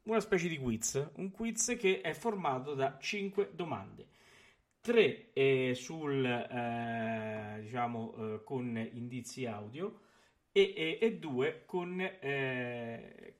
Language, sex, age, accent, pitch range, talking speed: Italian, male, 40-59, native, 115-190 Hz, 115 wpm